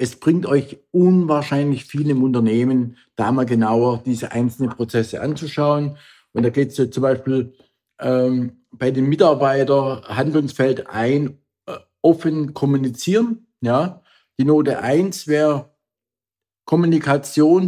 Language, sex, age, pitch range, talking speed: German, male, 50-69, 130-170 Hz, 120 wpm